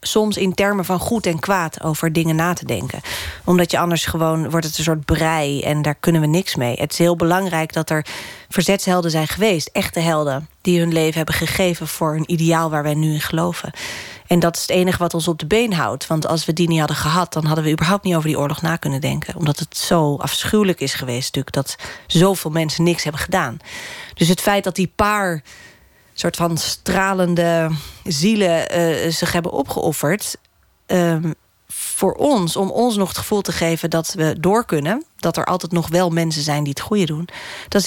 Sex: female